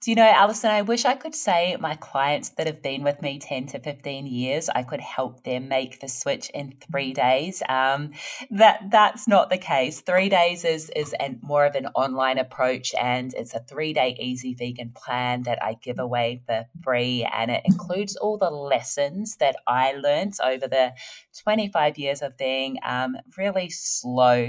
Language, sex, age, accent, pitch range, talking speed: English, female, 20-39, Australian, 125-155 Hz, 185 wpm